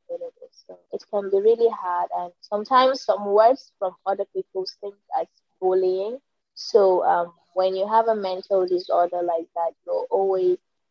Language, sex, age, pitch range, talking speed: English, female, 20-39, 185-255 Hz, 155 wpm